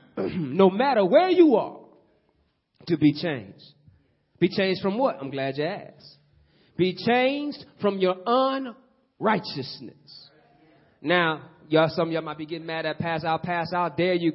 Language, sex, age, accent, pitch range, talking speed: English, male, 30-49, American, 165-220 Hz, 155 wpm